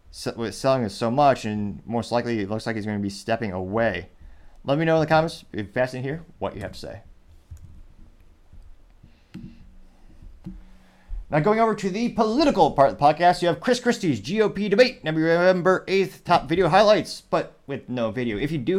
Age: 30-49